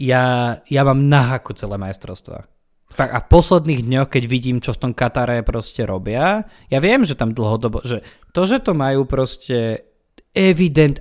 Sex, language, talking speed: male, Slovak, 165 wpm